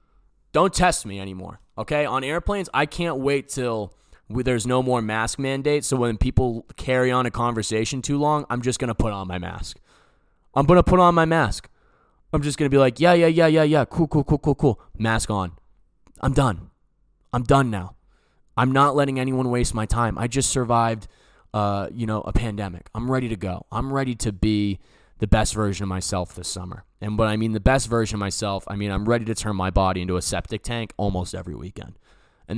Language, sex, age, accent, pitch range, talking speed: English, male, 20-39, American, 95-135 Hz, 220 wpm